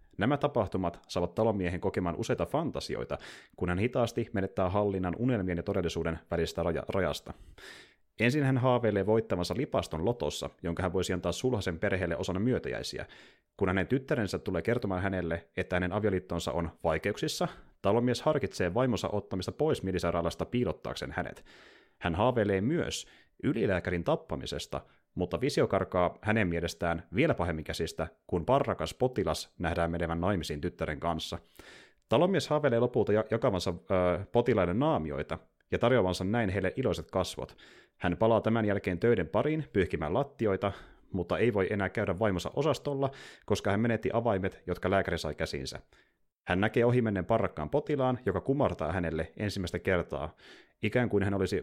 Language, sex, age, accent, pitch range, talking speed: Finnish, male, 30-49, native, 85-115 Hz, 140 wpm